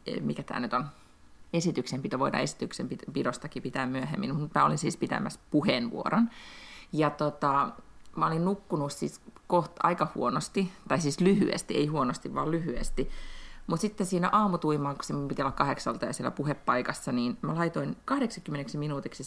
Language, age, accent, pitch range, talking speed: Finnish, 30-49, native, 135-185 Hz, 140 wpm